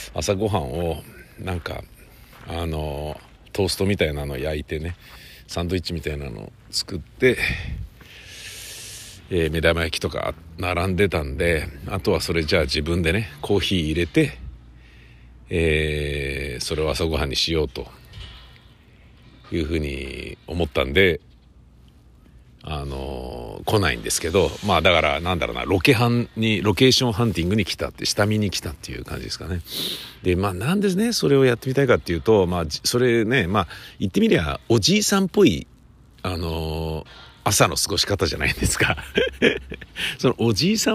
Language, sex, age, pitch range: Japanese, male, 50-69, 75-110 Hz